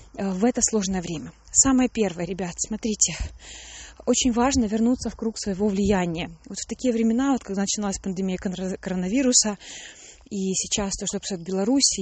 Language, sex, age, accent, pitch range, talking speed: Russian, female, 20-39, native, 185-225 Hz, 155 wpm